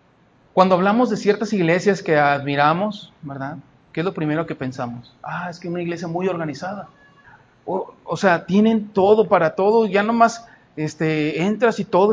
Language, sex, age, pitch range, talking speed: Spanish, male, 40-59, 160-210 Hz, 170 wpm